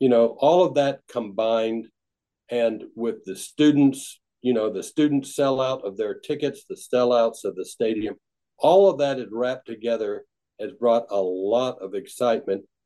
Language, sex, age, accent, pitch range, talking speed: English, male, 60-79, American, 110-130 Hz, 170 wpm